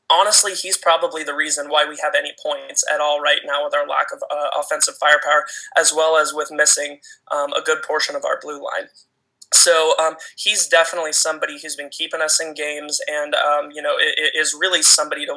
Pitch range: 150-195 Hz